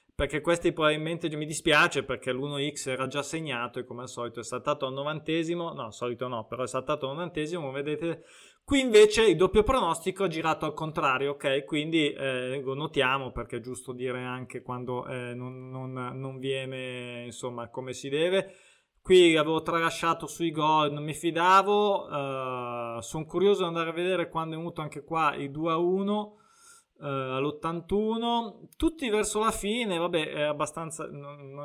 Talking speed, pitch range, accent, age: 170 wpm, 130-165 Hz, native, 20-39